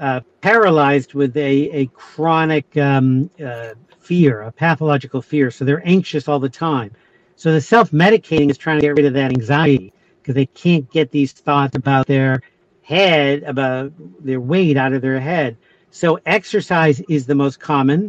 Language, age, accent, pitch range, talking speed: English, 50-69, American, 135-160 Hz, 170 wpm